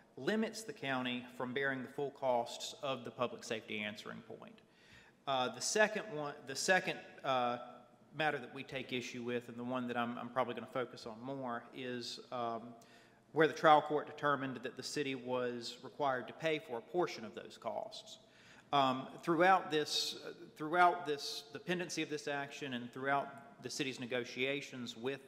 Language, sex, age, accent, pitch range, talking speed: English, male, 40-59, American, 120-150 Hz, 175 wpm